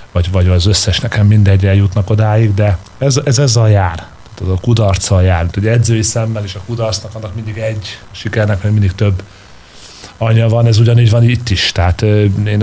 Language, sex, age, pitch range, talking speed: Hungarian, male, 30-49, 100-115 Hz, 185 wpm